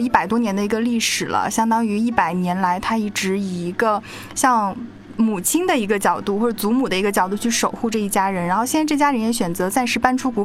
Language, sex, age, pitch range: Chinese, female, 20-39, 195-240 Hz